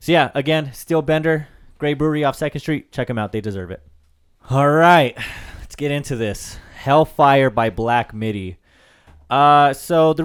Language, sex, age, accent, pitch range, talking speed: English, male, 20-39, American, 100-145 Hz, 170 wpm